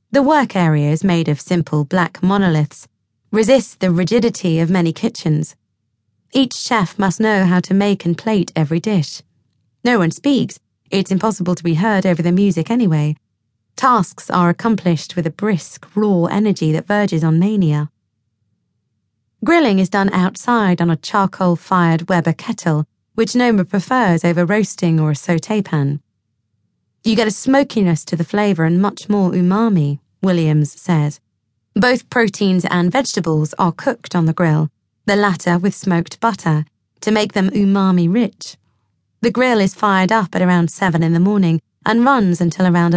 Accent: British